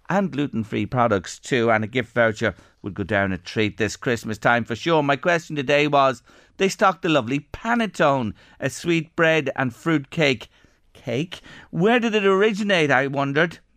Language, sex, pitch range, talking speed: English, male, 110-145 Hz, 180 wpm